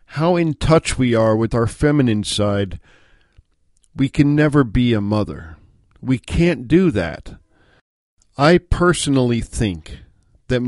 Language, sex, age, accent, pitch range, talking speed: English, male, 50-69, American, 105-145 Hz, 130 wpm